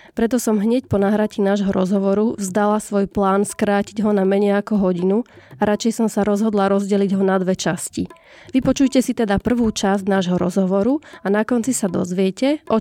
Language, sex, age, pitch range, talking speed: Slovak, female, 20-39, 190-220 Hz, 185 wpm